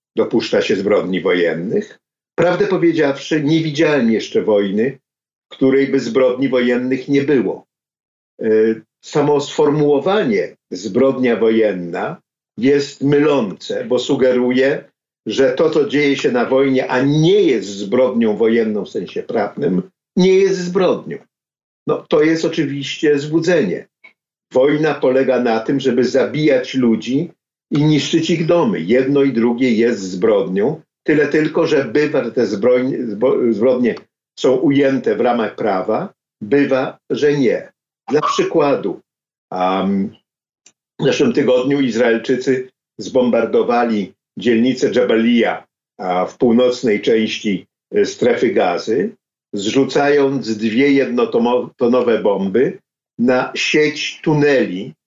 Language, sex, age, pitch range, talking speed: Polish, male, 50-69, 120-150 Hz, 110 wpm